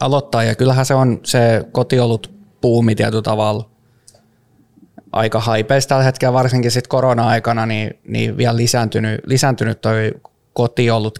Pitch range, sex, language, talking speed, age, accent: 110-120 Hz, male, Finnish, 130 wpm, 20-39, native